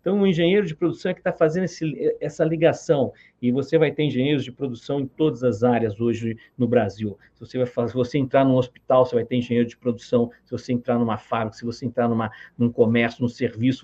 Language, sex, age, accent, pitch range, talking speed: Portuguese, male, 50-69, Brazilian, 120-150 Hz, 210 wpm